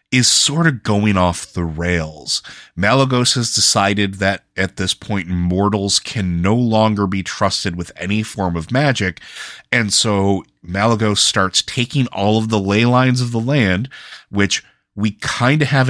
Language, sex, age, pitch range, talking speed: English, male, 30-49, 90-110 Hz, 160 wpm